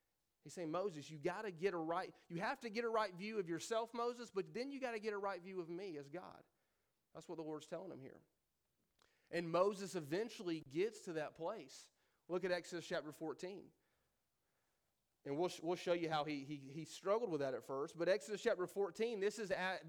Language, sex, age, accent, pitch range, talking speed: English, male, 30-49, American, 160-205 Hz, 215 wpm